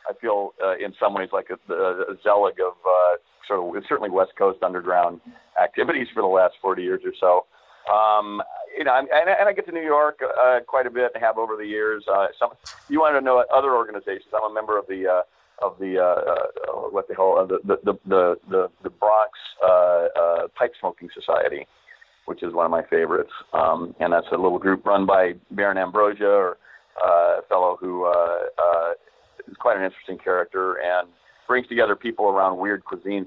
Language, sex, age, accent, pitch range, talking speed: English, male, 40-59, American, 90-125 Hz, 205 wpm